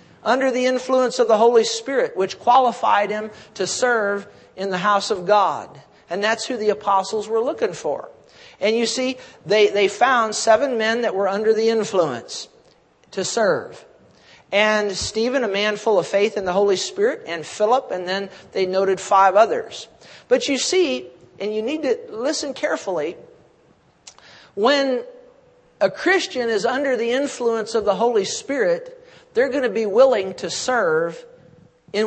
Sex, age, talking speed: male, 50-69, 165 wpm